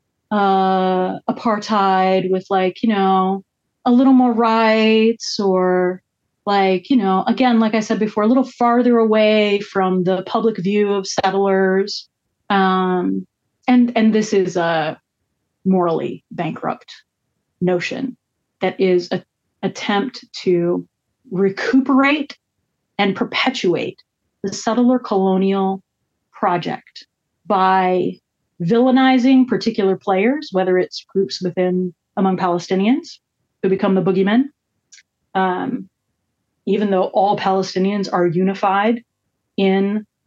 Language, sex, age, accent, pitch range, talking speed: English, female, 30-49, American, 185-225 Hz, 105 wpm